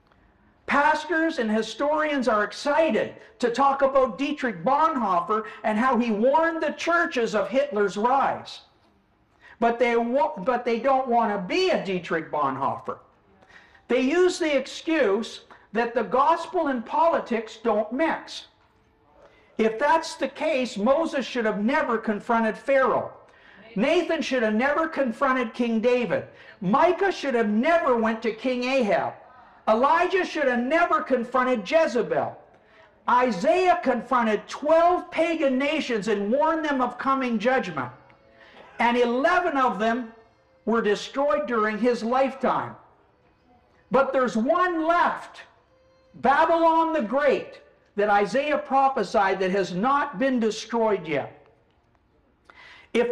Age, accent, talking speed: 50-69, American, 125 wpm